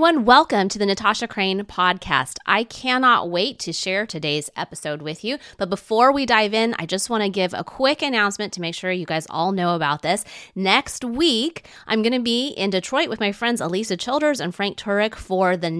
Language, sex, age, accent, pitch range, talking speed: English, female, 30-49, American, 170-215 Hz, 210 wpm